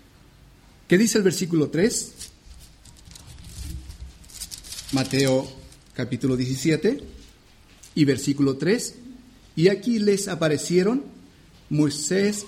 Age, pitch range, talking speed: 40-59, 105-165 Hz, 75 wpm